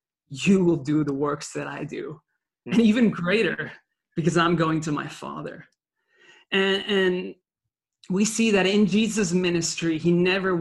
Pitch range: 165-200 Hz